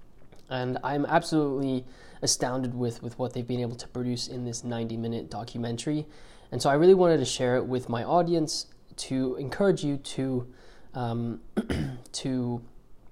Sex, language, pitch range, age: male, English, 115-130 Hz, 20-39